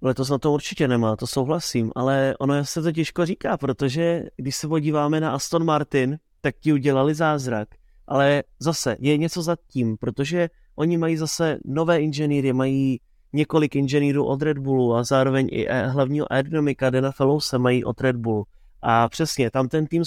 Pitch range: 135-155 Hz